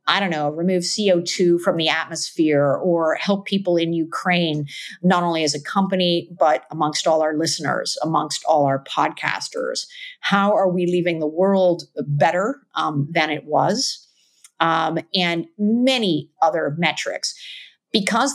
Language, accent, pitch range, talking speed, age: English, American, 160-190 Hz, 145 wpm, 50-69